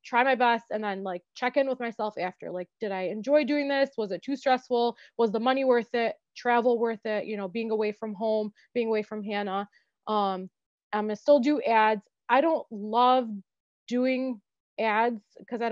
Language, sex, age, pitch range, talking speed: English, female, 20-39, 205-255 Hz, 200 wpm